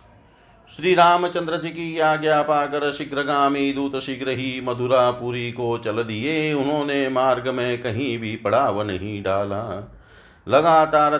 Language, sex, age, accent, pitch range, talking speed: Hindi, male, 40-59, native, 115-145 Hz, 125 wpm